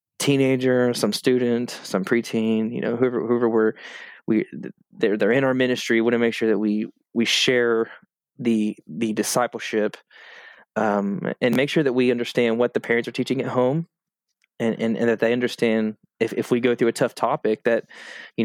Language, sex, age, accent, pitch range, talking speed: English, male, 20-39, American, 110-125 Hz, 185 wpm